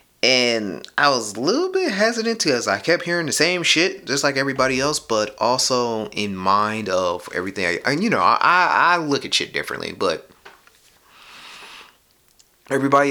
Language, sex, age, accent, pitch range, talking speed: English, male, 30-49, American, 90-140 Hz, 160 wpm